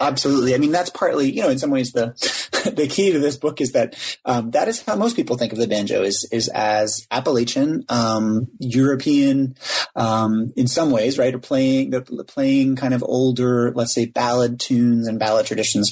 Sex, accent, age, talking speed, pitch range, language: male, American, 30-49, 205 wpm, 110-135 Hz, English